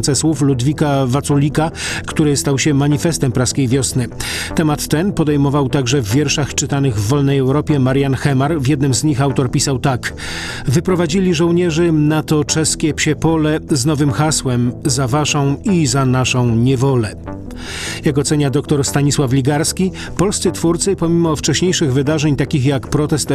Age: 40-59